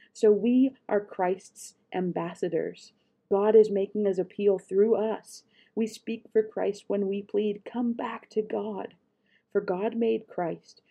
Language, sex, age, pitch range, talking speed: English, female, 40-59, 180-225 Hz, 150 wpm